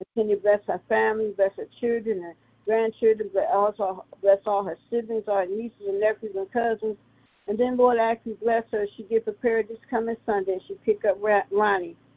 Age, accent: 50-69, American